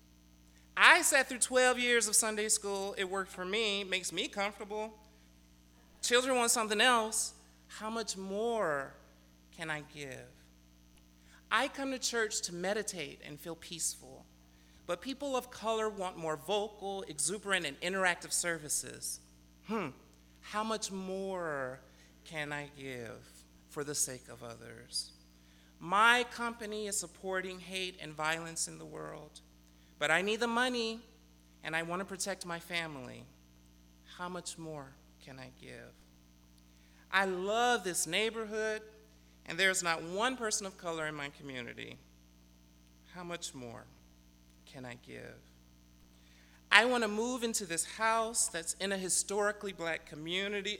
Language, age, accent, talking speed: English, 30-49, American, 140 wpm